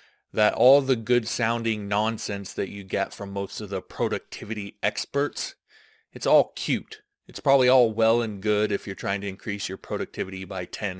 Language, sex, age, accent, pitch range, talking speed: English, male, 30-49, American, 100-120 Hz, 180 wpm